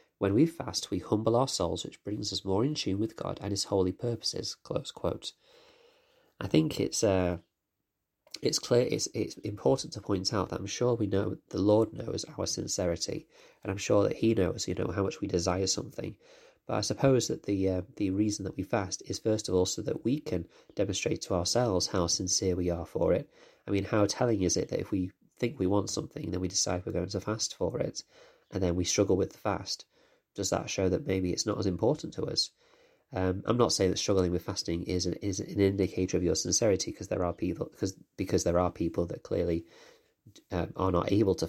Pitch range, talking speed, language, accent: 90-110 Hz, 225 wpm, English, British